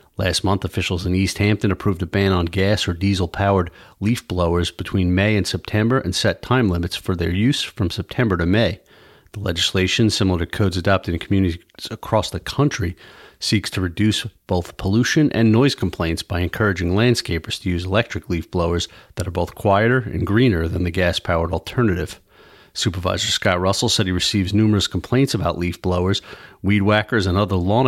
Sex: male